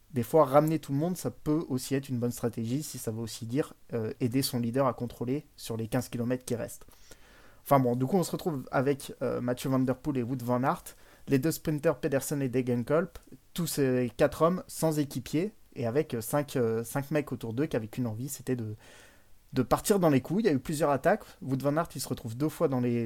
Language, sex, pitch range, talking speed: French, male, 120-145 Hz, 250 wpm